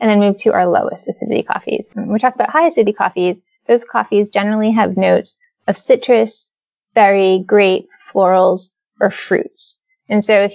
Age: 20-39